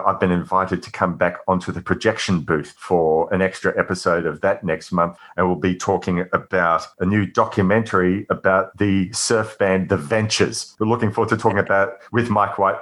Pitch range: 85-100 Hz